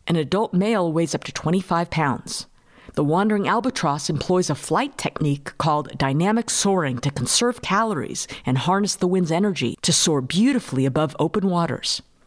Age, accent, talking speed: 50-69, American, 155 wpm